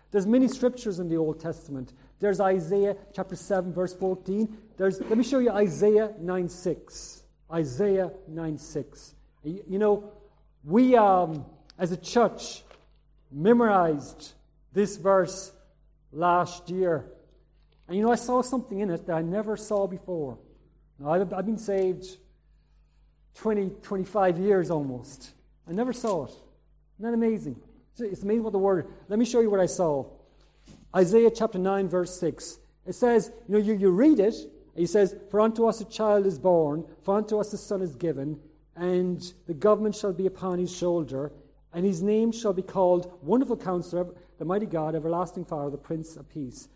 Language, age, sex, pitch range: English, 50-69, male, 165-205 Hz